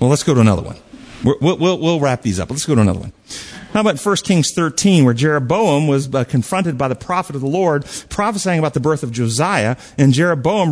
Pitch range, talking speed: 135-210 Hz, 220 wpm